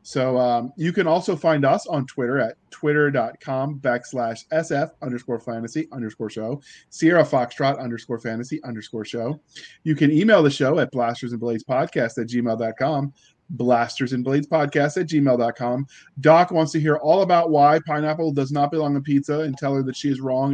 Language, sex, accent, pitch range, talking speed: English, male, American, 125-155 Hz, 180 wpm